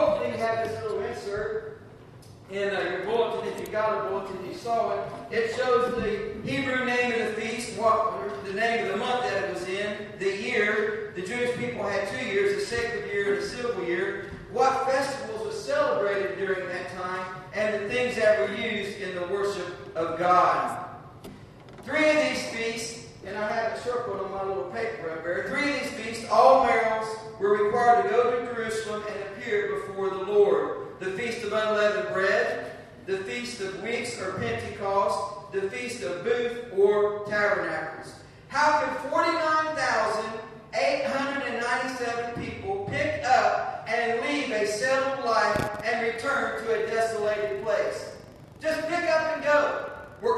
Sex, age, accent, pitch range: male, 50-69, American, 205-265 Hz